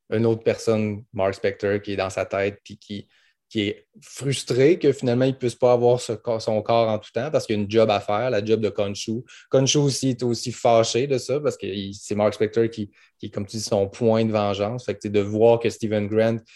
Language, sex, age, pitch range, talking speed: French, male, 20-39, 110-125 Hz, 245 wpm